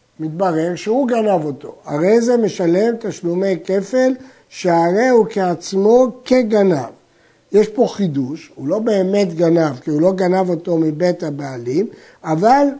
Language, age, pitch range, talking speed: Hebrew, 60-79, 170-225 Hz, 130 wpm